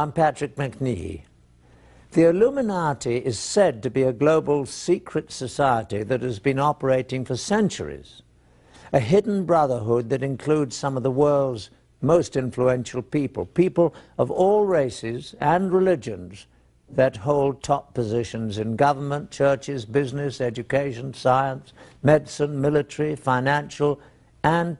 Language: English